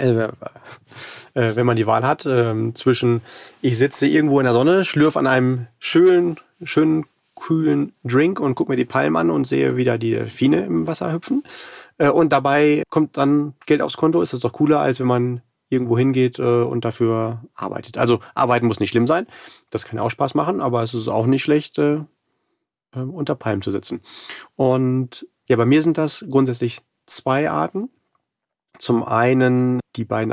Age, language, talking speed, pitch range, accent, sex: 30-49, German, 185 wpm, 110-140 Hz, German, male